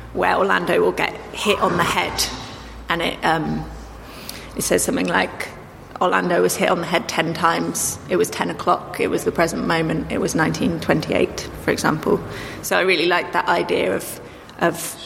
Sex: female